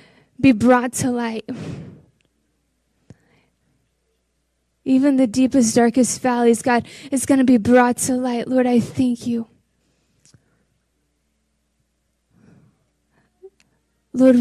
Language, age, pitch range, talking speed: English, 20-39, 240-295 Hz, 85 wpm